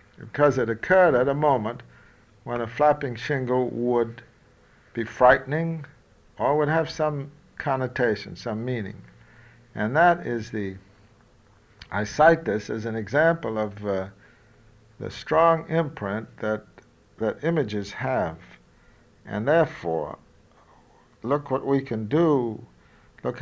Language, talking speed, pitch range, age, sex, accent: English, 120 wpm, 105-140 Hz, 60-79, male, American